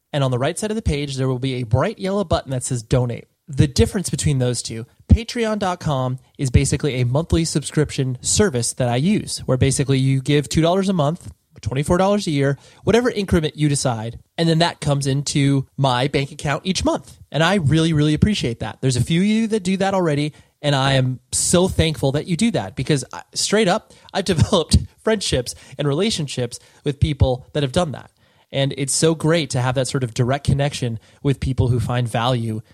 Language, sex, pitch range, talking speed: English, male, 125-160 Hz, 205 wpm